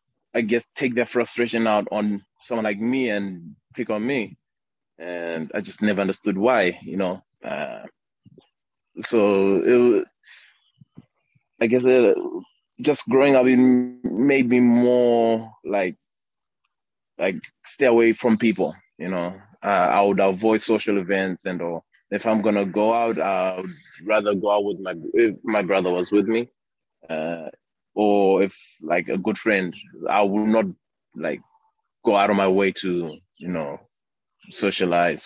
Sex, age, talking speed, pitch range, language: male, 20-39, 150 wpm, 95-120 Hz, English